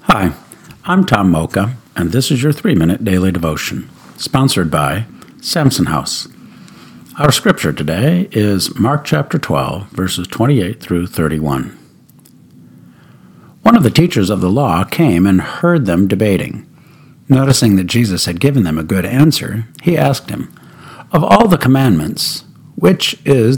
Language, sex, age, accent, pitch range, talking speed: English, male, 60-79, American, 95-150 Hz, 145 wpm